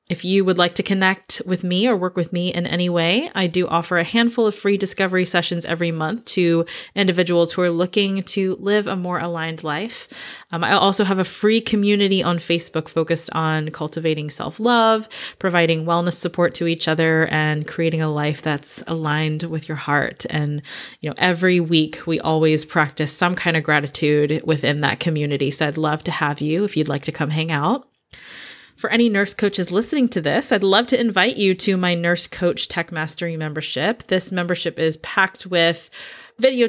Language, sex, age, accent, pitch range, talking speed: English, female, 30-49, American, 160-195 Hz, 195 wpm